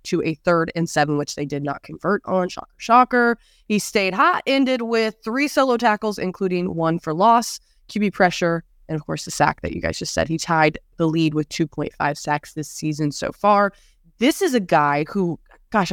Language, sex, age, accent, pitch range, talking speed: English, female, 20-39, American, 160-210 Hz, 205 wpm